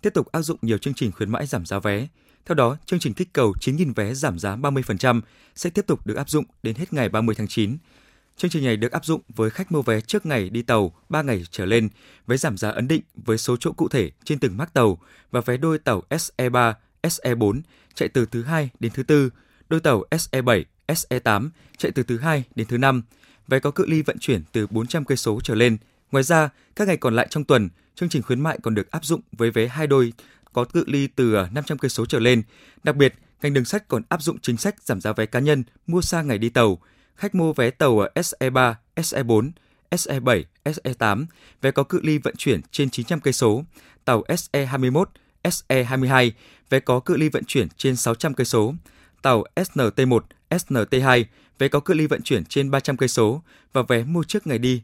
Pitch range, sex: 115-155 Hz, male